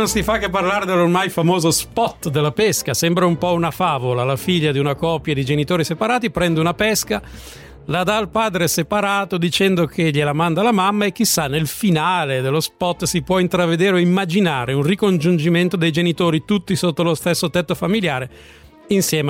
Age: 40-59